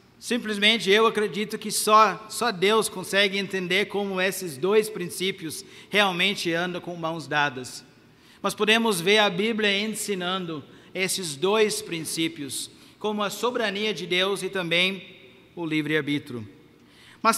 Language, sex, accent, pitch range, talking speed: Portuguese, male, Brazilian, 175-230 Hz, 130 wpm